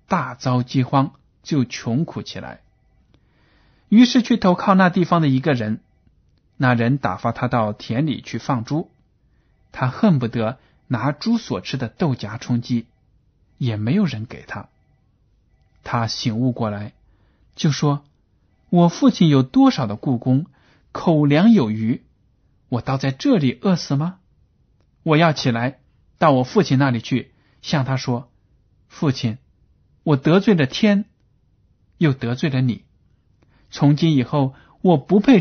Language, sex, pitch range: Chinese, male, 115-160 Hz